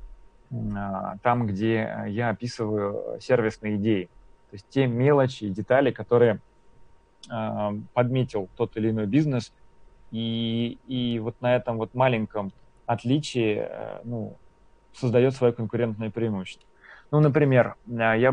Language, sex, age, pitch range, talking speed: Russian, male, 30-49, 110-135 Hz, 110 wpm